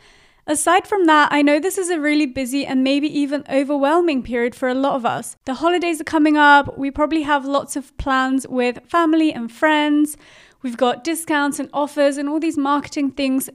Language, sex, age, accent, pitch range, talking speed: English, female, 30-49, British, 265-310 Hz, 200 wpm